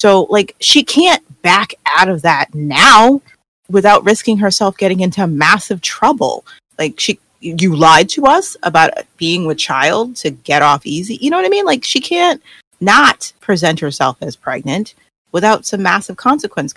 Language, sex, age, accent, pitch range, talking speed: English, female, 30-49, American, 155-215 Hz, 170 wpm